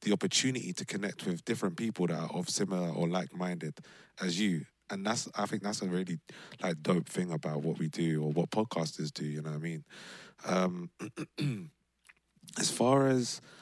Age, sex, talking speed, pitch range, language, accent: 20-39, male, 185 wpm, 80-105 Hz, English, British